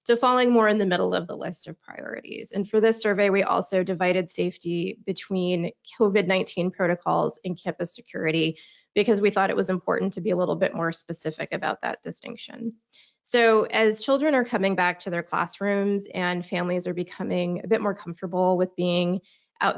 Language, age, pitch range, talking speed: English, 20-39, 180-215 Hz, 180 wpm